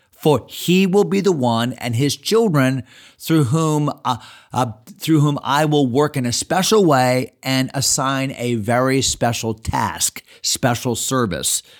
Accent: American